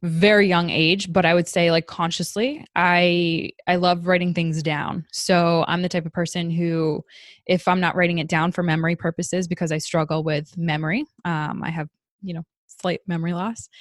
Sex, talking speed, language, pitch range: female, 190 wpm, English, 165-185 Hz